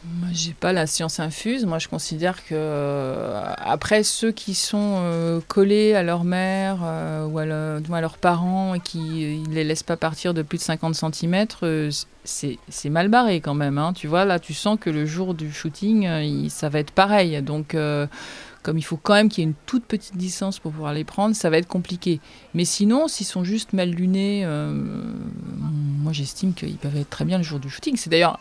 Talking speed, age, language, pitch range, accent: 210 wpm, 30-49, French, 150-190 Hz, French